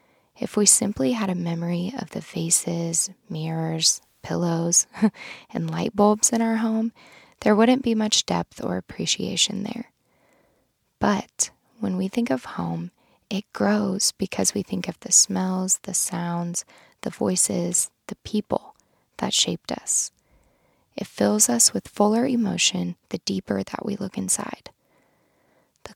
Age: 10-29